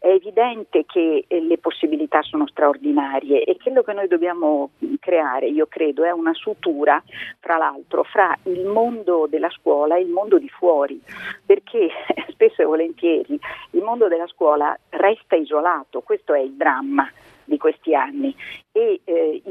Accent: native